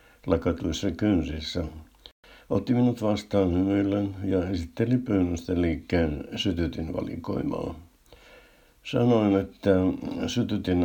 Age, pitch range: 60-79, 85-105 Hz